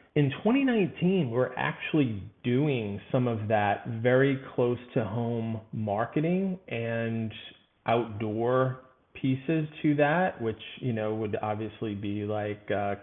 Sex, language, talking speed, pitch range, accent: male, English, 120 wpm, 110-140 Hz, American